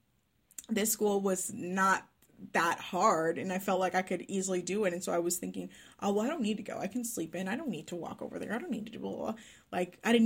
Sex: female